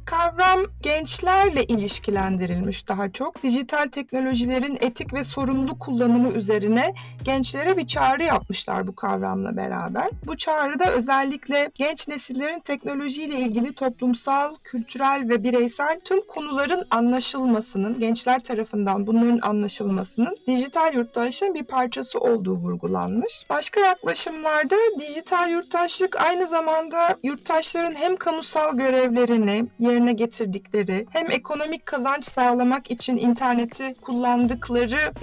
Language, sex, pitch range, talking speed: Turkish, female, 230-315 Hz, 105 wpm